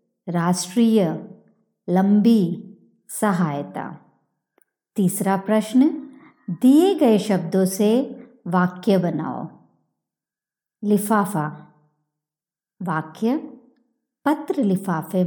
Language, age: Hindi, 50-69